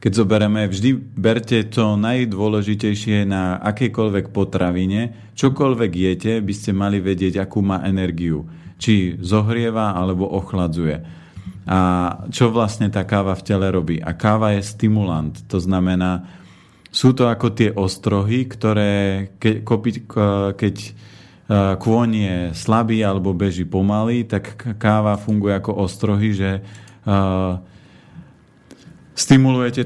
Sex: male